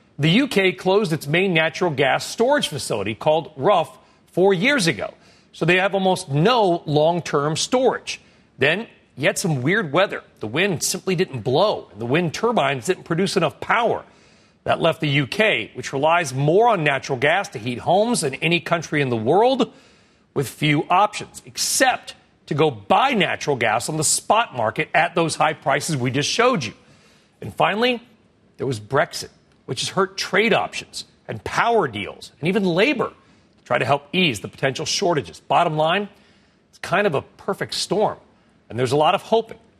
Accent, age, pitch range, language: American, 40-59, 145-190 Hz, English